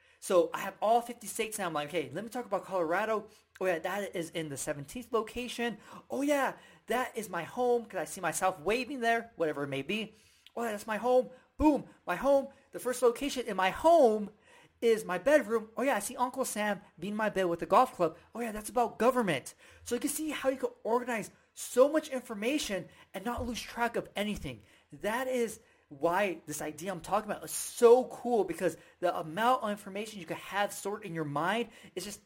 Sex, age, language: male, 30-49, English